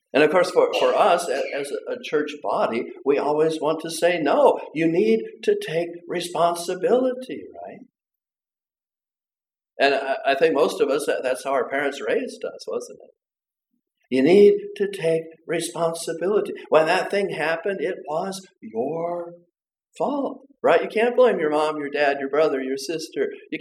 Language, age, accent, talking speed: English, 50-69, American, 160 wpm